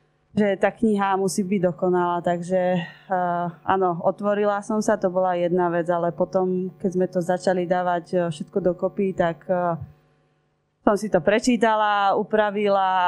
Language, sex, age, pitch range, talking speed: Slovak, female, 20-39, 175-195 Hz, 150 wpm